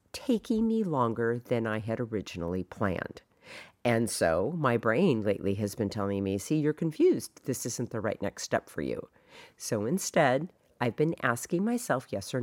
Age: 50-69